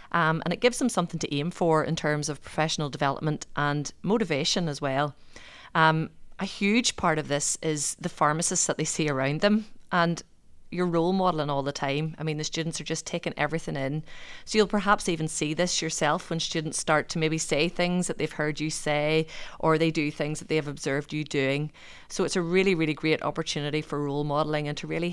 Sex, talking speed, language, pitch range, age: female, 215 wpm, English, 150-180 Hz, 30-49